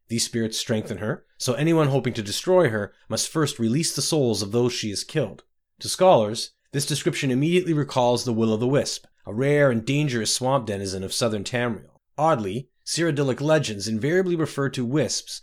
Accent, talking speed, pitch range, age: American, 185 wpm, 110-140 Hz, 30-49